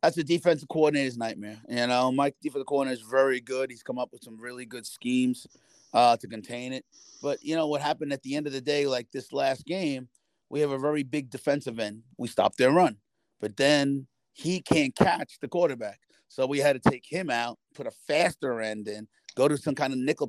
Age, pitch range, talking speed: 30-49, 115-135 Hz, 225 wpm